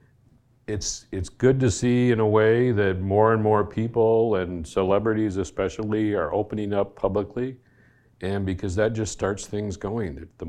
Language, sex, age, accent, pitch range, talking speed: English, male, 50-69, American, 95-110 Hz, 160 wpm